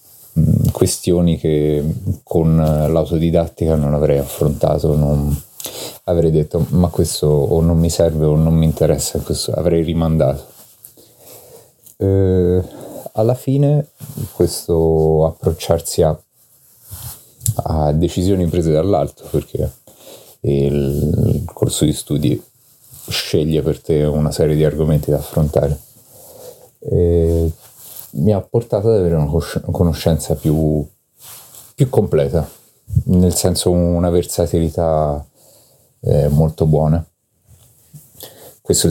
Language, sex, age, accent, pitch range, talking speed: Italian, male, 30-49, native, 75-95 Hz, 100 wpm